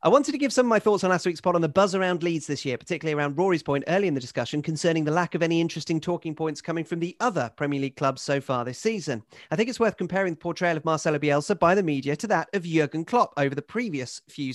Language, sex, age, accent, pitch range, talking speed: English, male, 40-59, British, 150-195 Hz, 280 wpm